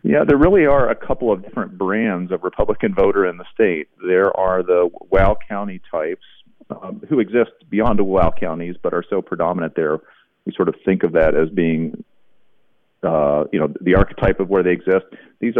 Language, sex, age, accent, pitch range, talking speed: English, male, 40-59, American, 90-115 Hz, 195 wpm